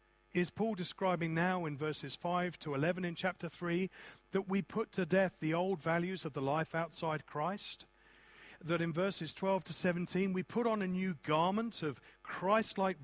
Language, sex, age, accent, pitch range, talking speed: English, male, 40-59, British, 150-195 Hz, 180 wpm